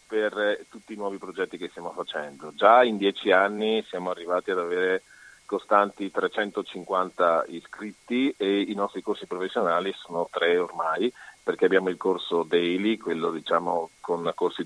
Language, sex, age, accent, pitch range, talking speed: Italian, male, 40-59, native, 90-115 Hz, 145 wpm